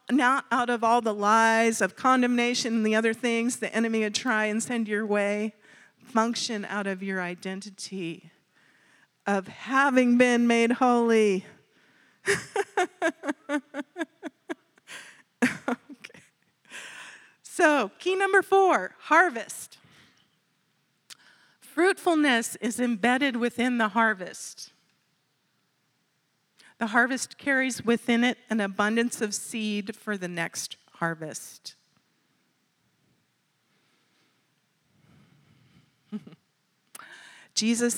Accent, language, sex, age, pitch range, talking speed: American, English, female, 40-59, 200-250 Hz, 90 wpm